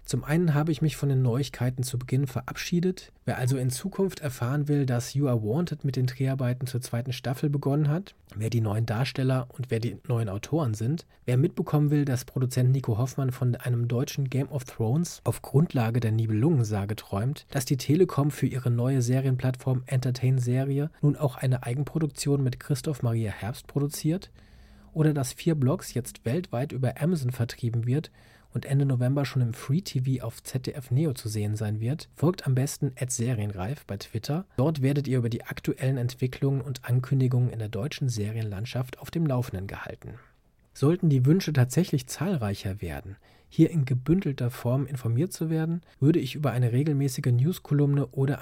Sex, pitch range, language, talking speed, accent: male, 120-145 Hz, German, 175 wpm, German